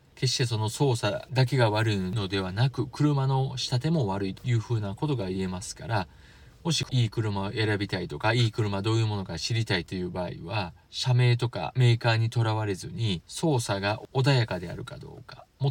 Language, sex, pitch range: Japanese, male, 100-130 Hz